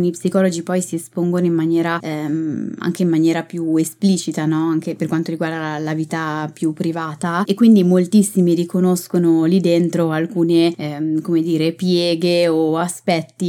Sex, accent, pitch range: female, native, 160-195 Hz